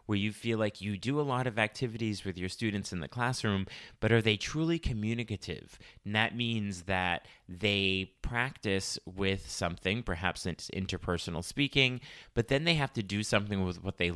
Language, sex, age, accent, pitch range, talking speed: English, male, 30-49, American, 90-110 Hz, 180 wpm